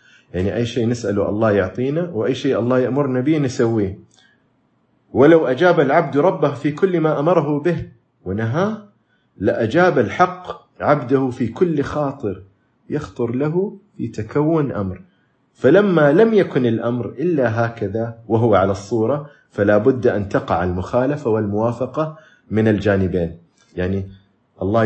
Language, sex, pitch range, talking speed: Arabic, male, 105-145 Hz, 130 wpm